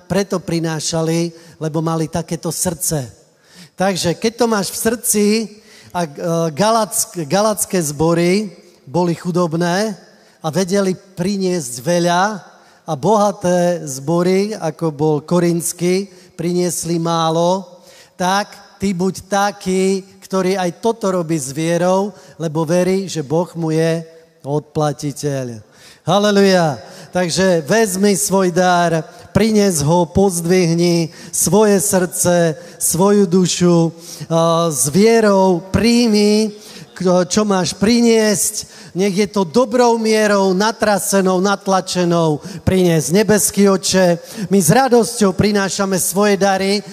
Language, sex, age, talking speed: Slovak, male, 30-49, 100 wpm